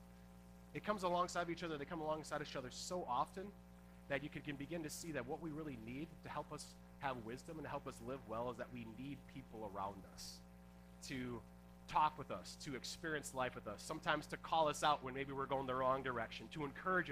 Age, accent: 30-49, American